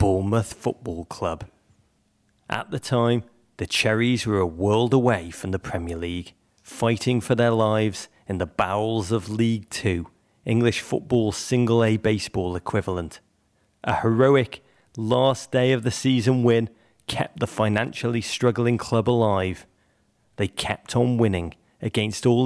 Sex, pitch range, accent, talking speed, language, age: male, 100-120 Hz, British, 125 wpm, English, 30-49